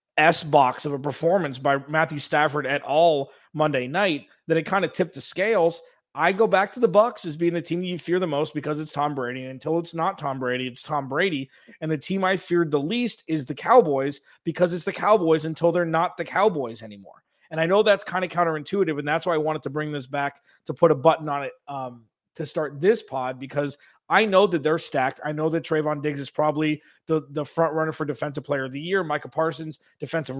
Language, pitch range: English, 145-170 Hz